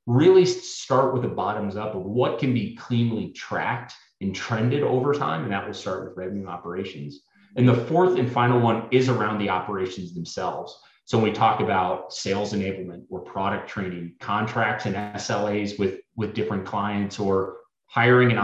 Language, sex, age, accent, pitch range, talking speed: English, male, 30-49, American, 100-125 Hz, 175 wpm